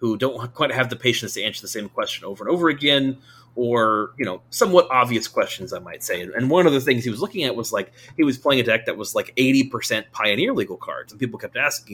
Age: 30-49